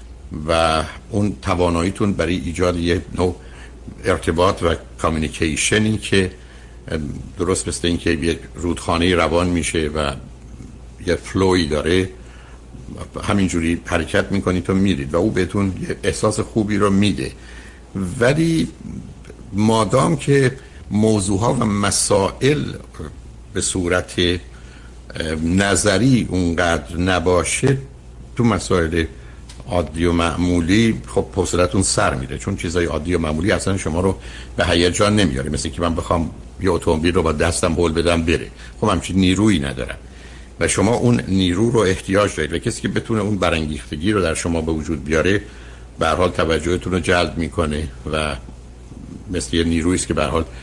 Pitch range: 75-95 Hz